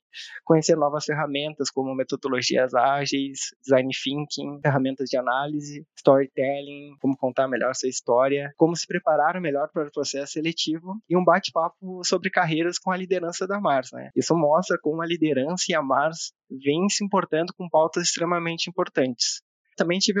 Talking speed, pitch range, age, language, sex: 155 wpm, 140-175 Hz, 20-39, Portuguese, male